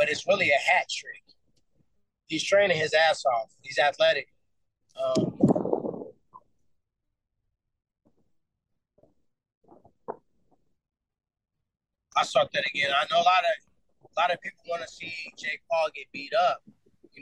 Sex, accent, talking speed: male, American, 125 wpm